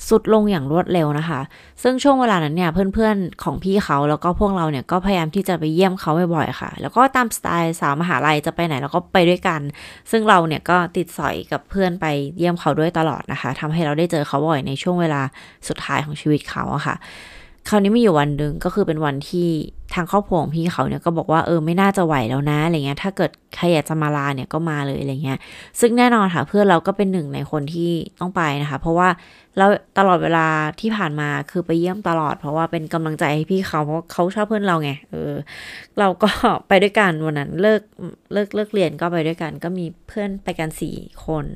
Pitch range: 150-195 Hz